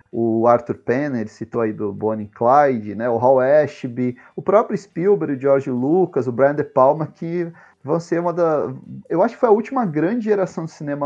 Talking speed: 205 wpm